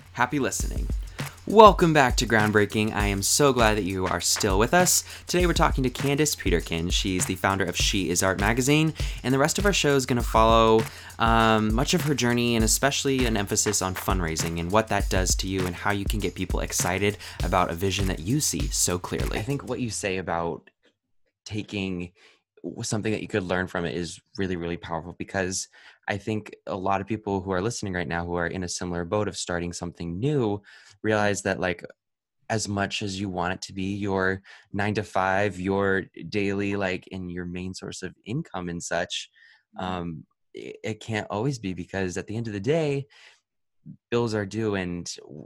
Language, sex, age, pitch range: English, male, 20-39, 90-110 Hz